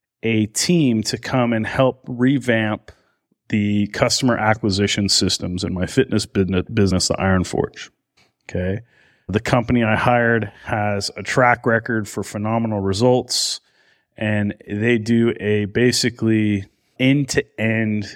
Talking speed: 125 wpm